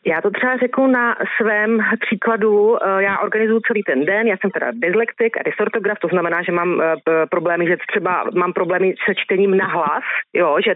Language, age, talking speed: Czech, 30-49, 185 wpm